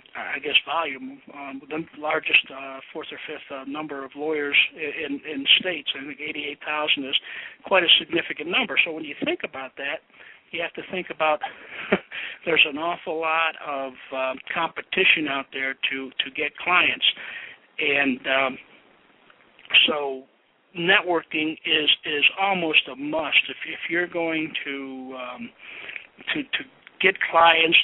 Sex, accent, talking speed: male, American, 150 wpm